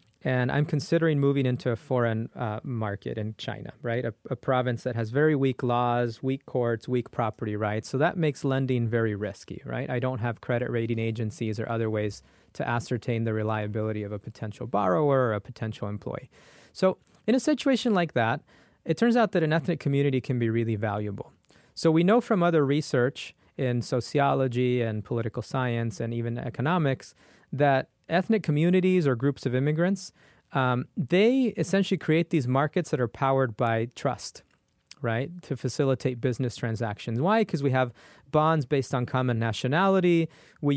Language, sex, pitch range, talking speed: English, male, 120-150 Hz, 170 wpm